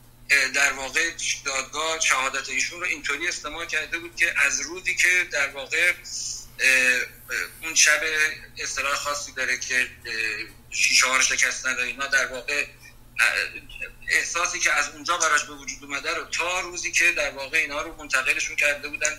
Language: Persian